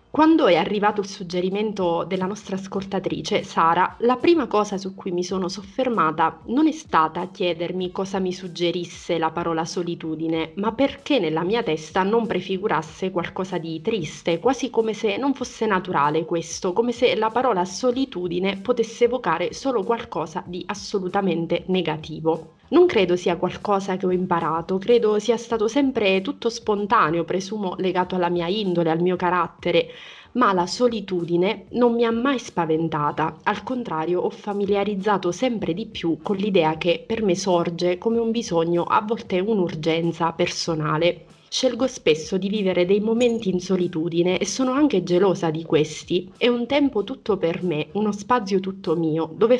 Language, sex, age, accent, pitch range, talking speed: Italian, female, 30-49, native, 170-225 Hz, 155 wpm